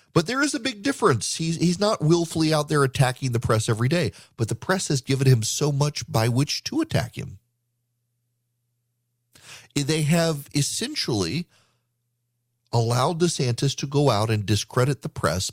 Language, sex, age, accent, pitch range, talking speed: English, male, 40-59, American, 120-155 Hz, 160 wpm